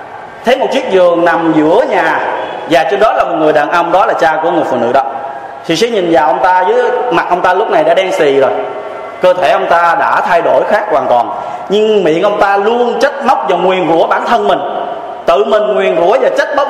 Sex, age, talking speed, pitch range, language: male, 20-39, 250 wpm, 160-220 Hz, Vietnamese